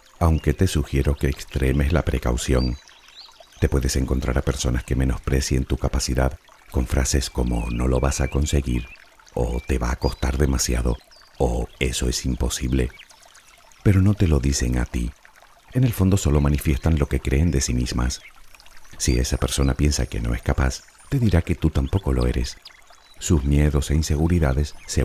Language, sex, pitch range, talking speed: Spanish, male, 65-80 Hz, 170 wpm